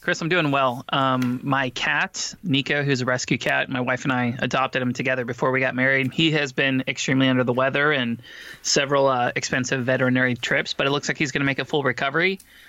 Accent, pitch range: American, 130-150 Hz